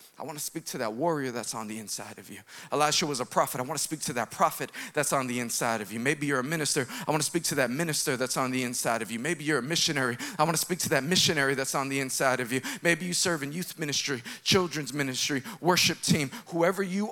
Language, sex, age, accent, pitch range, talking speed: English, male, 40-59, American, 160-215 Hz, 265 wpm